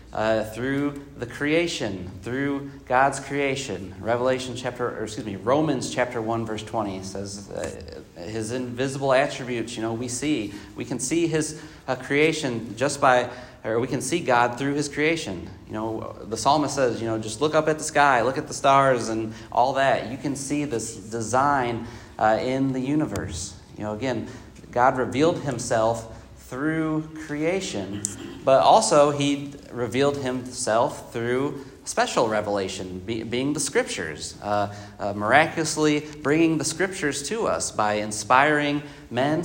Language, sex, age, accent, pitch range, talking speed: English, male, 30-49, American, 110-145 Hz, 155 wpm